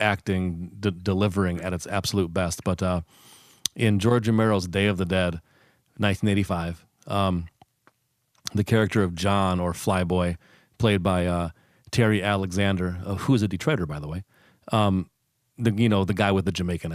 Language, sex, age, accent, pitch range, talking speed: English, male, 40-59, American, 90-115 Hz, 165 wpm